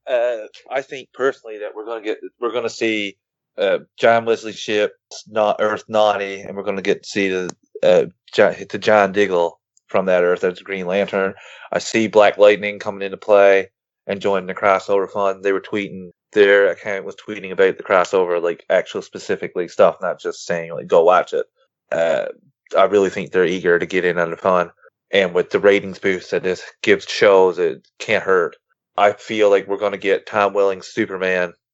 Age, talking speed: 20-39, 205 wpm